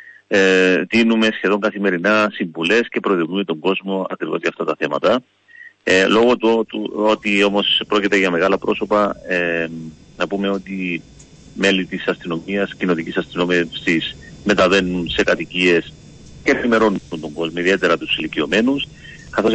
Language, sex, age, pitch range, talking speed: Greek, male, 40-59, 90-110 Hz, 130 wpm